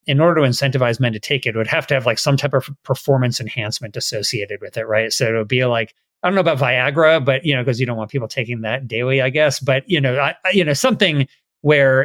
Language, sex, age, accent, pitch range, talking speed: English, male, 30-49, American, 110-140 Hz, 265 wpm